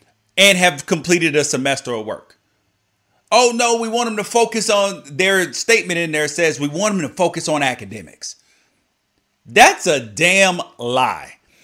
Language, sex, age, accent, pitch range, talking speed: English, male, 40-59, American, 140-180 Hz, 160 wpm